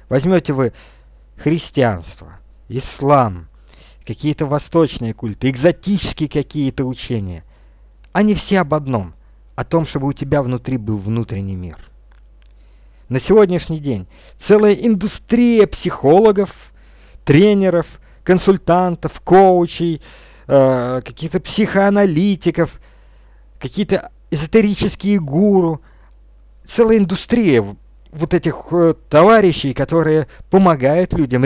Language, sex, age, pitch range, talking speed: Russian, male, 50-69, 120-180 Hz, 90 wpm